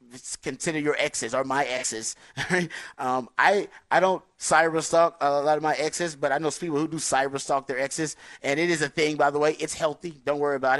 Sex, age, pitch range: male, 30-49, 130-155 Hz